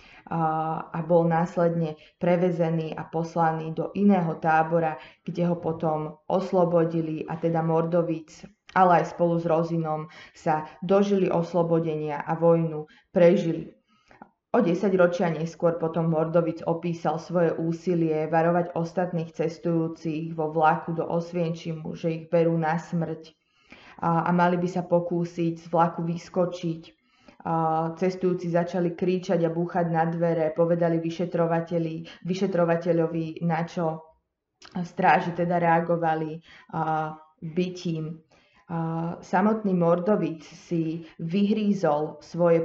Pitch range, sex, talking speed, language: 160-175 Hz, female, 110 wpm, Slovak